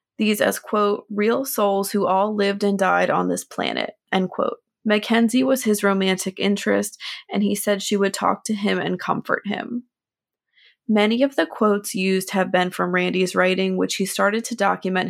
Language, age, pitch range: English, 20-39, 185-215 Hz